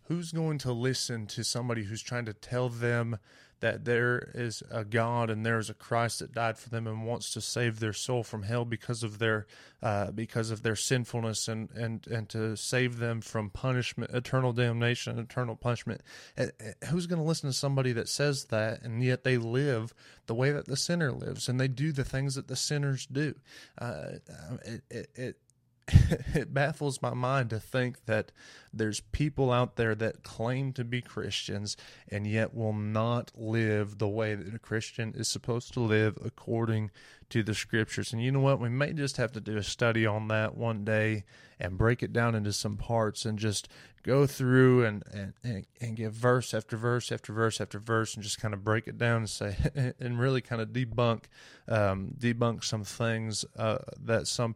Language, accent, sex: English, American, male